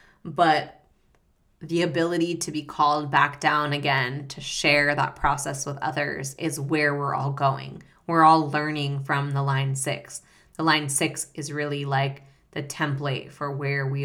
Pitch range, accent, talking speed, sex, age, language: 140-160 Hz, American, 160 wpm, female, 20-39, English